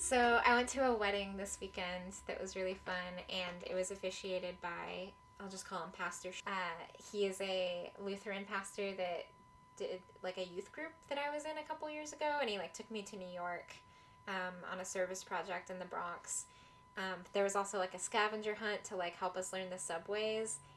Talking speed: 210 wpm